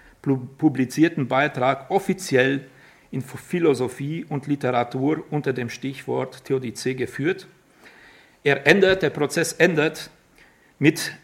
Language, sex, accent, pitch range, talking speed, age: German, male, German, 135-165 Hz, 95 wpm, 50-69